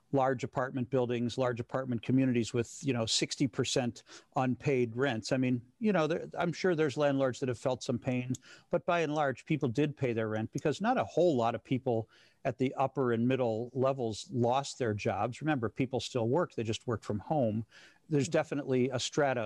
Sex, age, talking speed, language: male, 50-69, 195 wpm, English